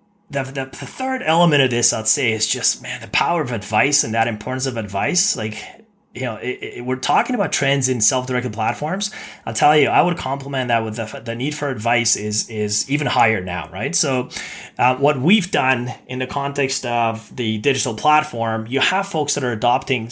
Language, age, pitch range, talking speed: English, 30-49, 115-145 Hz, 210 wpm